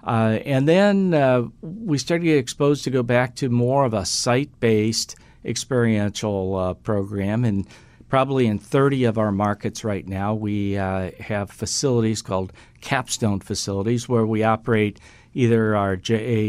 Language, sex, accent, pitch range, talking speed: English, male, American, 105-130 Hz, 155 wpm